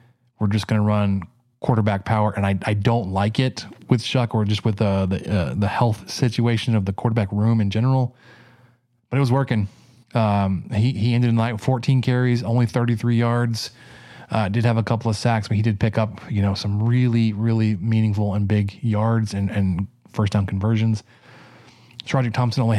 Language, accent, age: English, American, 20-39